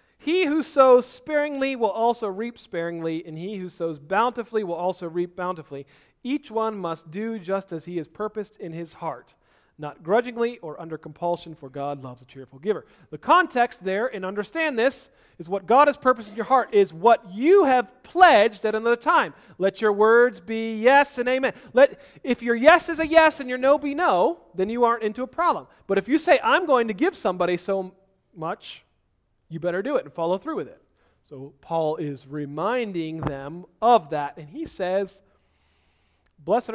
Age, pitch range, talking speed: 40-59, 160-245 Hz, 195 wpm